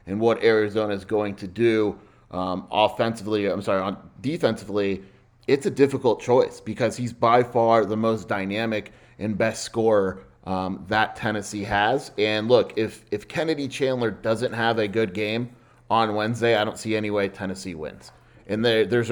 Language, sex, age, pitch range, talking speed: English, male, 30-49, 100-115 Hz, 165 wpm